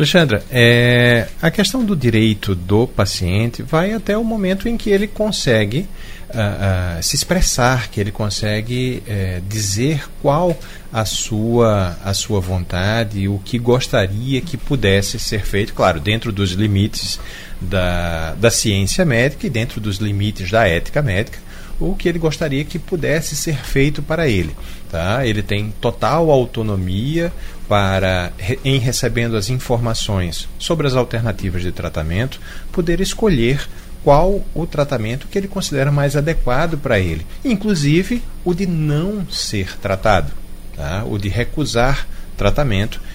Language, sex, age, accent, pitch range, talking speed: Portuguese, male, 40-59, Brazilian, 100-145 Hz, 135 wpm